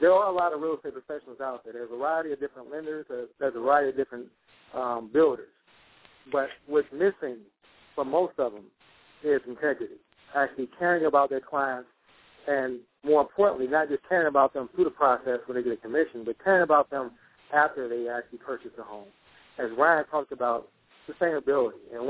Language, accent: English, American